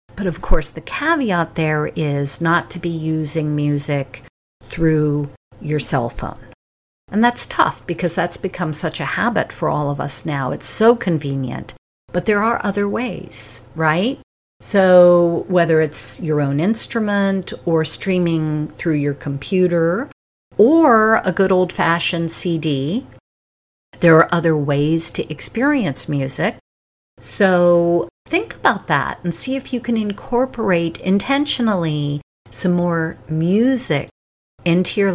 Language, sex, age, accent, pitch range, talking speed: English, female, 50-69, American, 150-195 Hz, 135 wpm